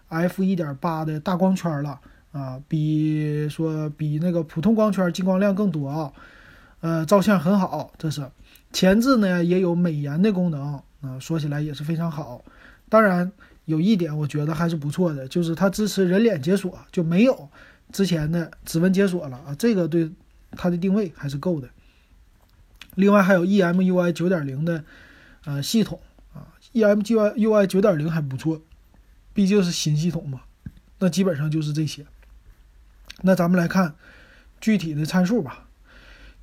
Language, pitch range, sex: Chinese, 155-200 Hz, male